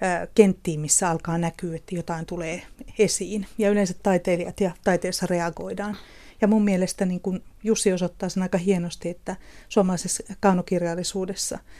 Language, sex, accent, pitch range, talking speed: Finnish, female, native, 175-200 Hz, 130 wpm